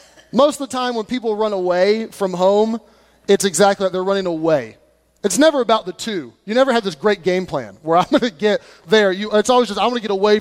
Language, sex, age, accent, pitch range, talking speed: English, male, 30-49, American, 170-205 Hz, 250 wpm